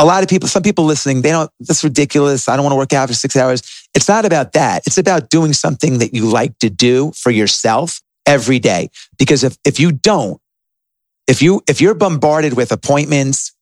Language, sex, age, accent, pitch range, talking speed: English, male, 40-59, American, 125-150 Hz, 215 wpm